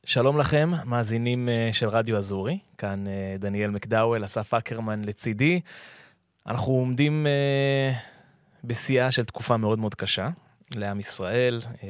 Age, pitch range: 20-39, 105-125 Hz